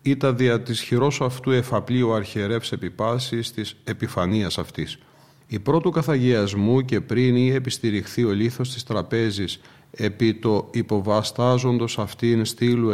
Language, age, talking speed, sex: Greek, 40-59, 125 wpm, male